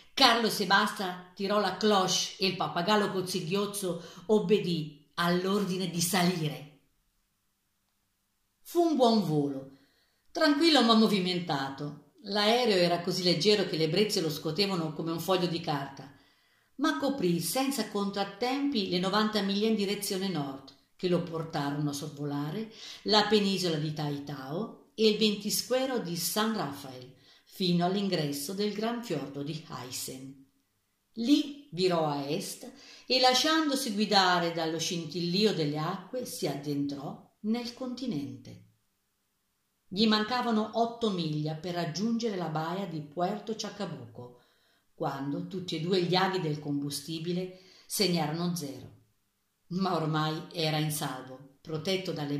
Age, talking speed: 50-69, 125 wpm